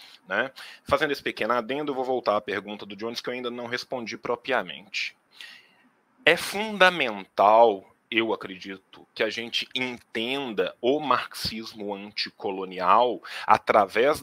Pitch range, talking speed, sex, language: 115-155 Hz, 125 wpm, male, Portuguese